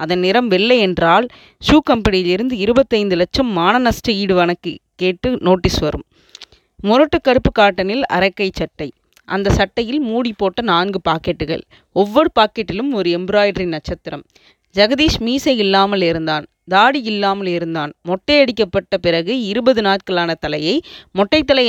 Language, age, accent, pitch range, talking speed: Tamil, 20-39, native, 180-245 Hz, 115 wpm